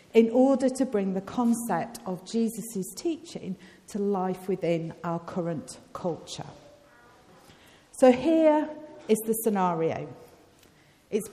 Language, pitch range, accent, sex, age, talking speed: English, 190-270 Hz, British, female, 50-69, 110 wpm